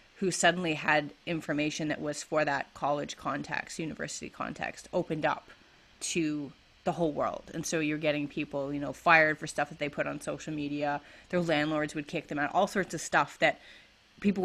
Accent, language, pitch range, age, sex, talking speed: American, English, 150-180 Hz, 30-49, female, 190 wpm